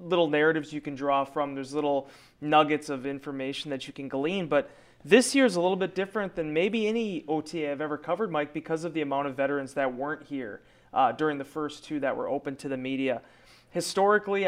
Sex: male